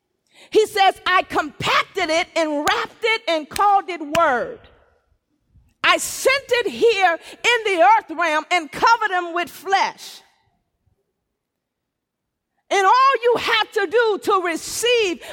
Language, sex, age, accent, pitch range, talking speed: English, female, 40-59, American, 335-430 Hz, 130 wpm